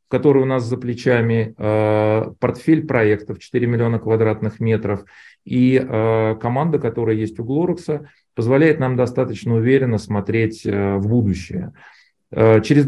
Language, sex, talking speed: Russian, male, 115 wpm